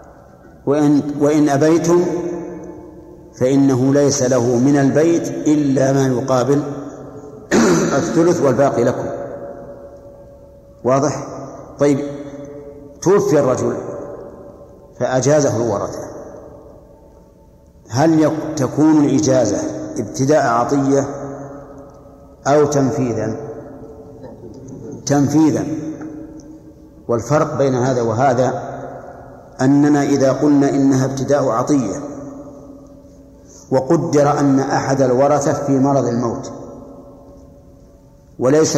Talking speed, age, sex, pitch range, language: 70 wpm, 60-79, male, 130-150 Hz, Arabic